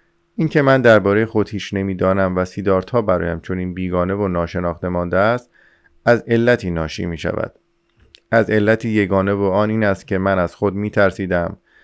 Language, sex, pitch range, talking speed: Persian, male, 90-115 Hz, 160 wpm